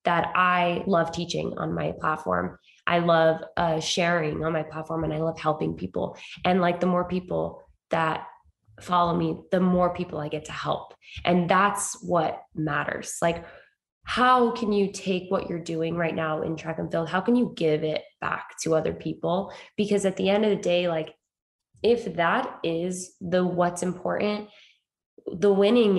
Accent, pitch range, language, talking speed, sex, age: American, 165-195 Hz, English, 180 wpm, female, 20-39